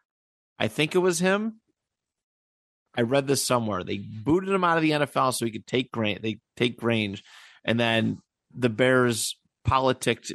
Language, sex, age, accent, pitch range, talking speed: English, male, 30-49, American, 110-130 Hz, 170 wpm